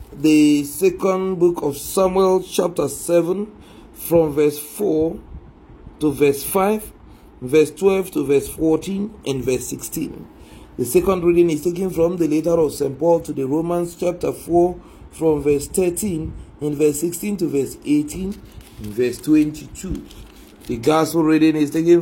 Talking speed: 145 wpm